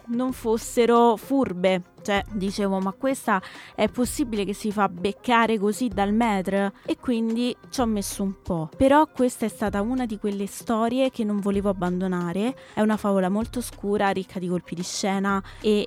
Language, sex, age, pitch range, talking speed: Italian, female, 20-39, 185-235 Hz, 175 wpm